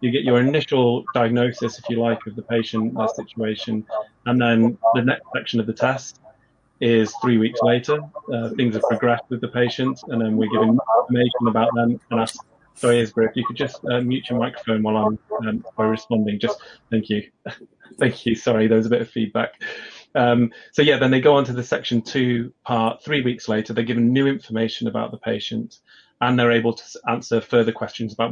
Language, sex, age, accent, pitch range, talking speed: English, male, 30-49, British, 110-125 Hz, 210 wpm